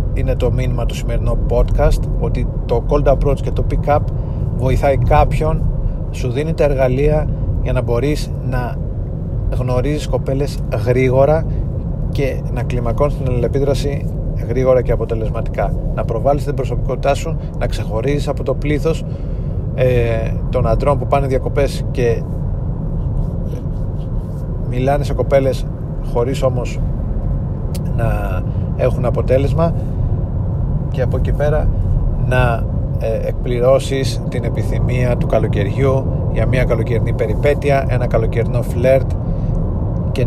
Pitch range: 115-135 Hz